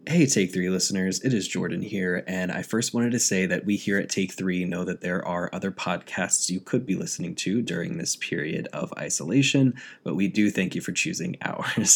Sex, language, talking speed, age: male, English, 220 wpm, 20-39